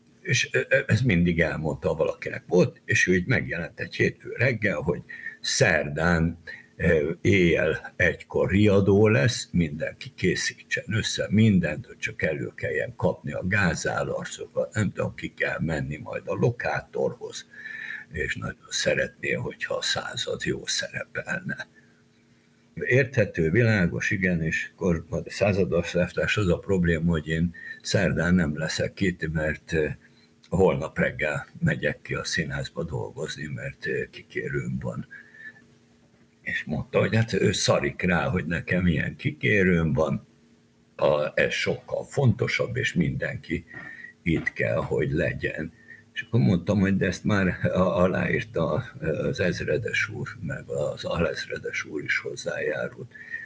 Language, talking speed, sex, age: Hungarian, 125 wpm, male, 60-79